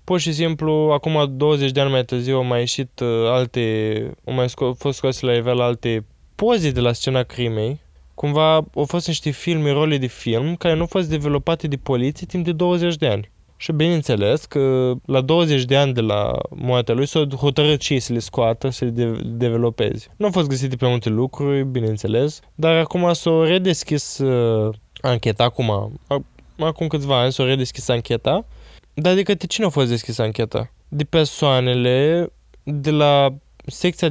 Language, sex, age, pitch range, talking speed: Romanian, male, 20-39, 125-165 Hz, 180 wpm